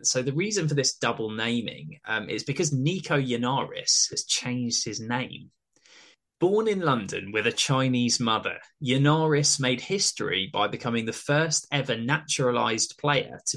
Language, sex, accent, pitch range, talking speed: English, male, British, 110-145 Hz, 150 wpm